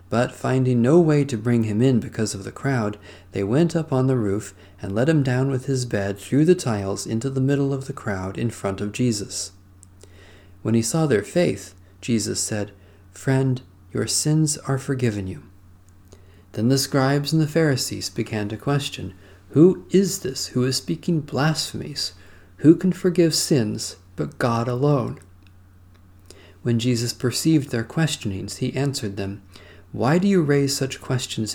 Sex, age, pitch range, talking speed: male, 40-59, 95-135 Hz, 165 wpm